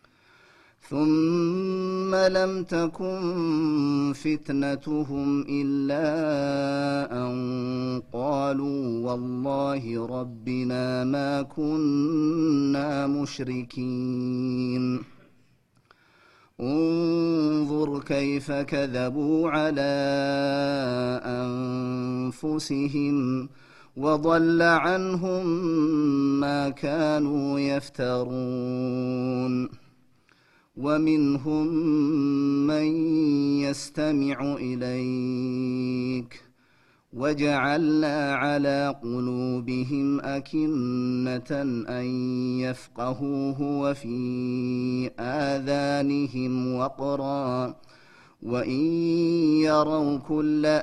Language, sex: Amharic, male